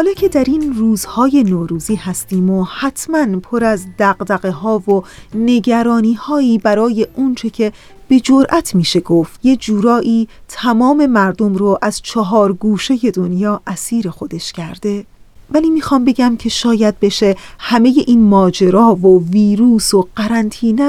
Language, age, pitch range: Persian, 40-59, 195-245 Hz